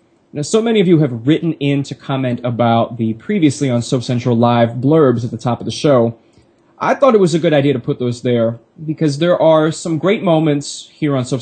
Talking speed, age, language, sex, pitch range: 230 wpm, 20-39, English, male, 125-160 Hz